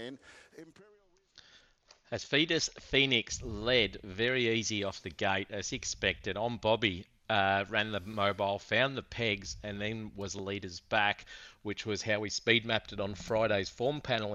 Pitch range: 100-115 Hz